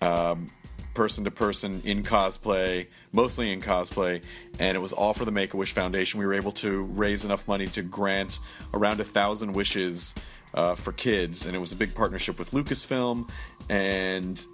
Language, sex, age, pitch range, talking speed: English, male, 30-49, 95-110 Hz, 165 wpm